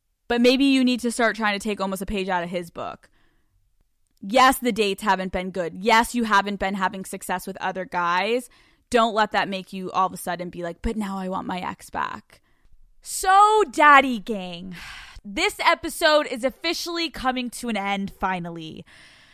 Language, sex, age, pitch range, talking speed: English, female, 20-39, 195-255 Hz, 190 wpm